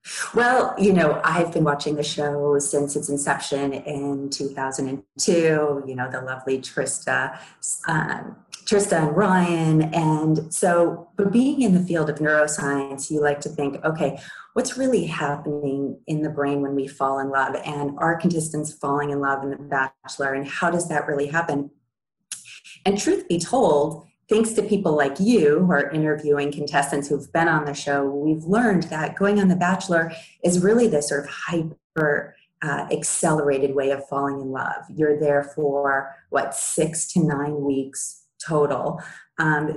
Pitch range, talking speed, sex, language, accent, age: 145-175 Hz, 165 wpm, female, English, American, 30-49